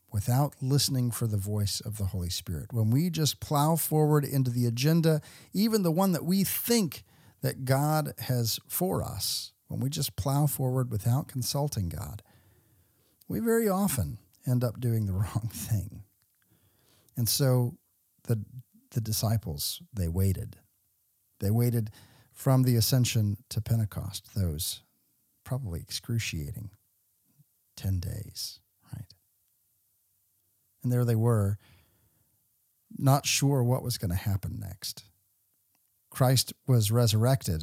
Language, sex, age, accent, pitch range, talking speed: English, male, 50-69, American, 105-135 Hz, 125 wpm